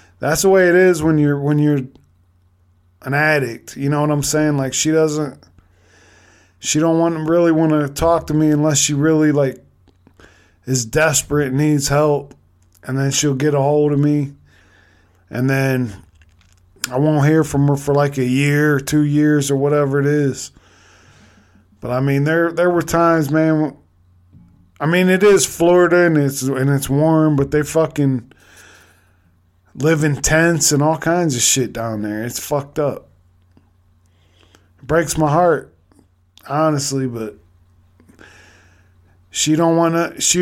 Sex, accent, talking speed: male, American, 160 wpm